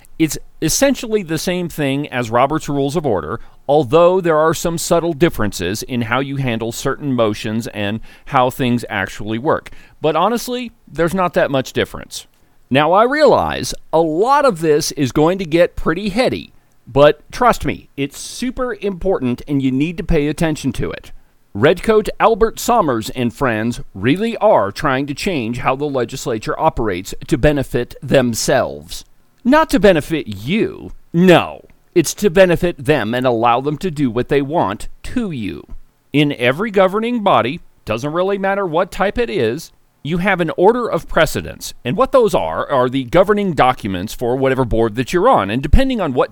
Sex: male